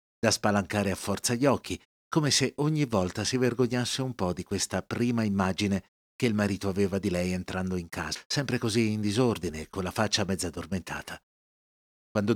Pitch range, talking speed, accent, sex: 95-125 Hz, 185 wpm, native, male